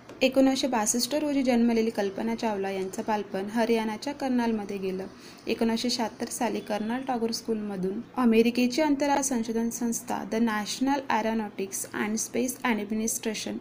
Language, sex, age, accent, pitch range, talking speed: Marathi, female, 20-39, native, 210-245 Hz, 120 wpm